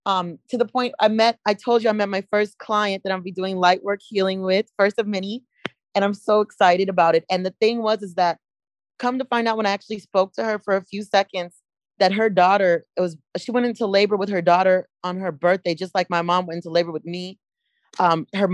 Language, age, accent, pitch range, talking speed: English, 30-49, American, 185-230 Hz, 250 wpm